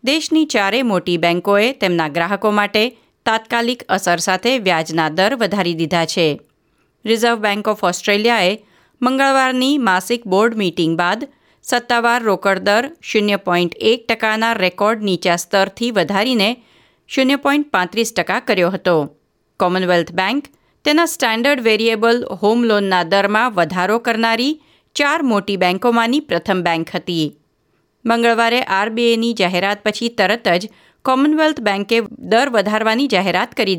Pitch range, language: 185-240 Hz, Gujarati